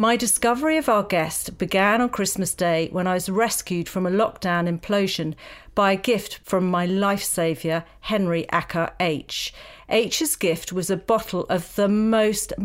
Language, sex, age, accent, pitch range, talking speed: English, female, 50-69, British, 175-220 Hz, 165 wpm